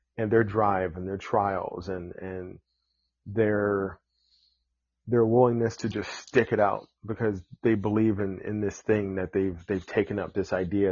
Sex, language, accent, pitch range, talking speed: male, English, American, 90-115 Hz, 165 wpm